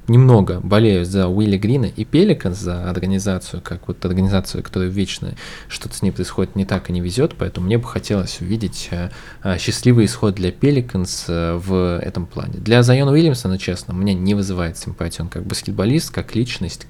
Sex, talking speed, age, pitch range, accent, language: male, 175 wpm, 20-39, 95-125 Hz, native, Russian